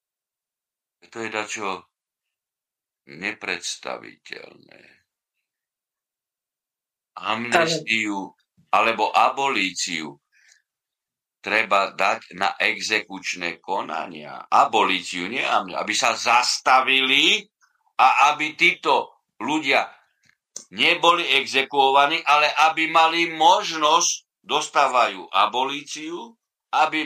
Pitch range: 120-175 Hz